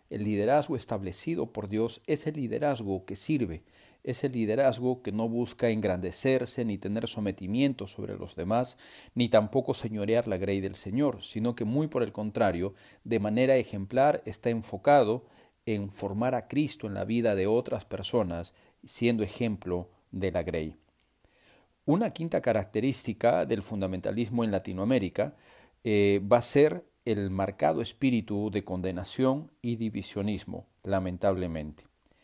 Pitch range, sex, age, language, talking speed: 100-130 Hz, male, 40-59, Spanish, 140 wpm